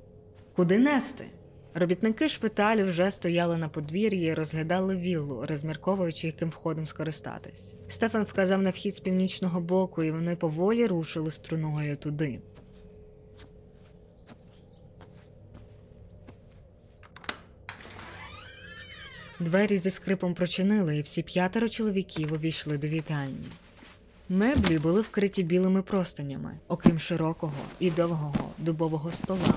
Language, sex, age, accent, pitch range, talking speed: Ukrainian, female, 20-39, native, 150-185 Hz, 100 wpm